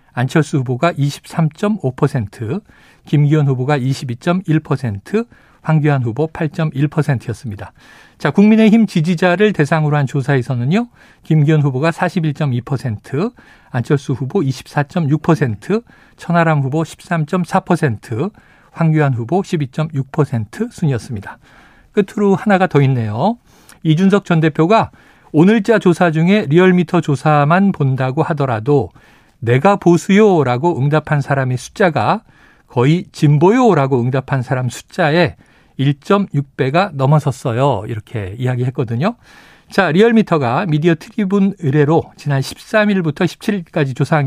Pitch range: 135-180 Hz